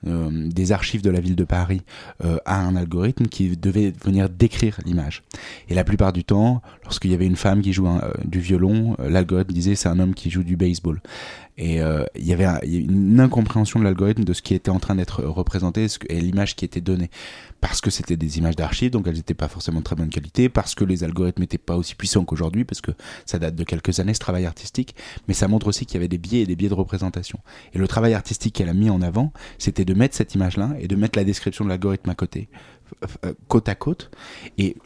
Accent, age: French, 20-39